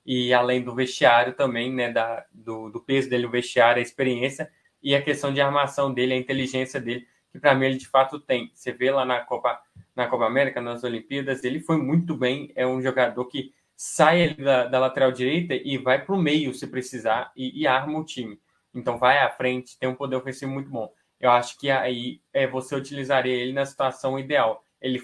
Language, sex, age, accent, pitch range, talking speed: Portuguese, male, 20-39, Brazilian, 125-145 Hz, 210 wpm